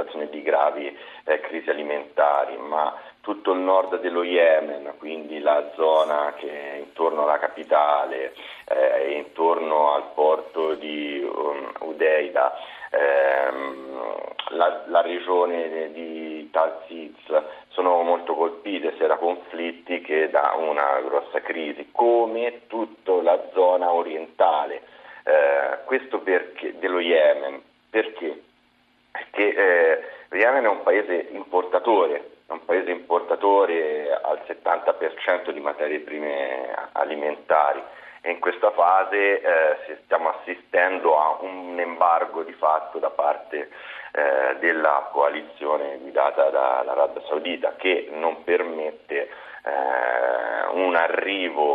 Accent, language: native, Italian